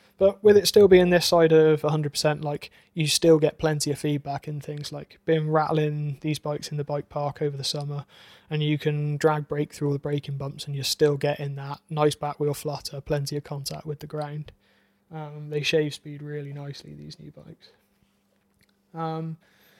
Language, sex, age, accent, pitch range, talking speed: English, male, 20-39, British, 145-165 Hz, 195 wpm